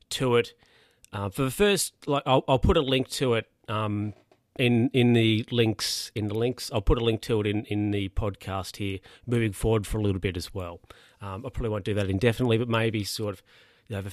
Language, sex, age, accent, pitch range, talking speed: English, male, 40-59, Australian, 100-130 Hz, 235 wpm